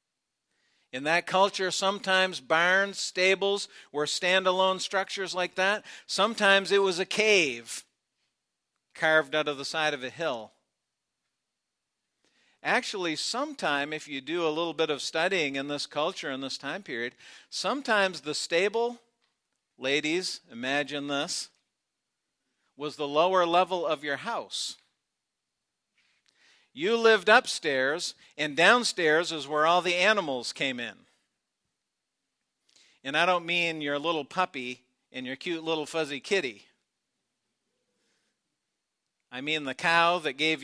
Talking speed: 125 wpm